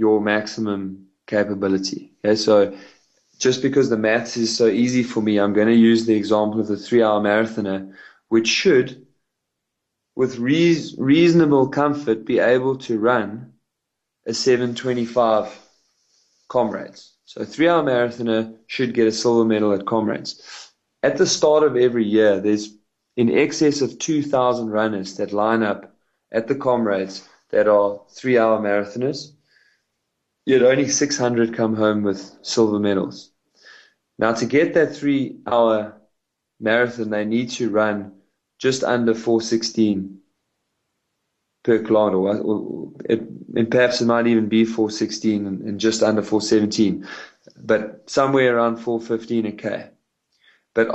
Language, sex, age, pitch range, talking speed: English, male, 20-39, 105-125 Hz, 135 wpm